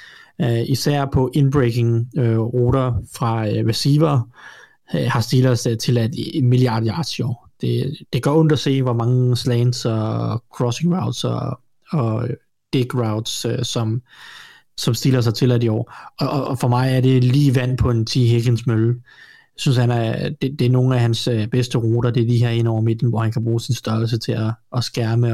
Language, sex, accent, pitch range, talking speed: Danish, male, native, 115-130 Hz, 200 wpm